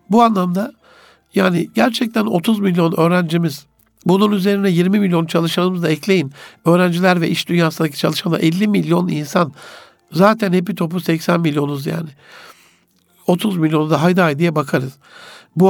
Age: 60-79